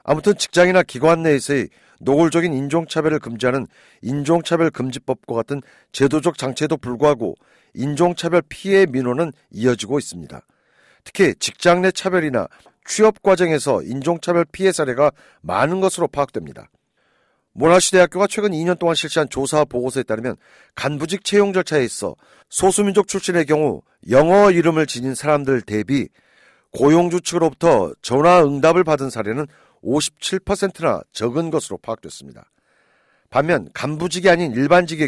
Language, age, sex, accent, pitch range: Korean, 40-59, male, native, 135-175 Hz